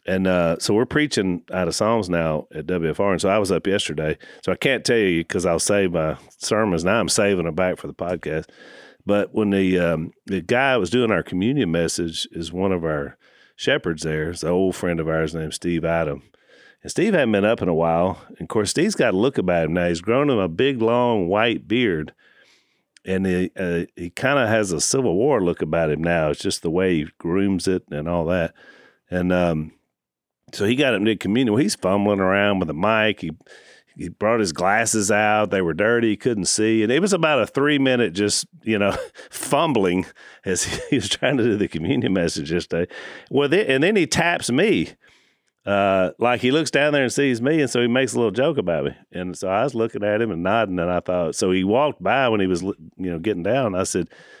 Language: English